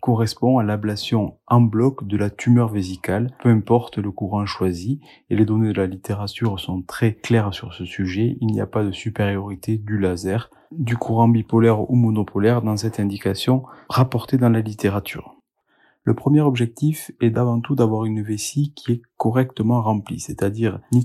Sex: male